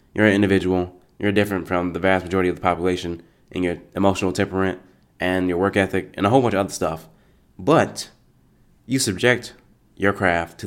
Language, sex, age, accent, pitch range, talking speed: English, male, 20-39, American, 90-105 Hz, 185 wpm